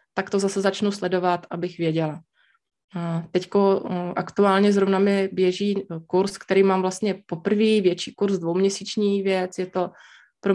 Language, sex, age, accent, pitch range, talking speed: Czech, female, 20-39, native, 175-195 Hz, 135 wpm